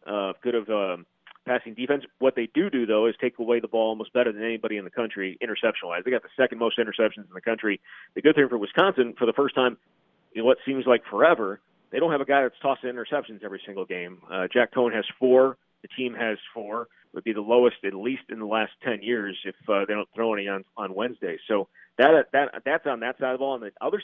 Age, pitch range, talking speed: 40-59, 105-130 Hz, 250 wpm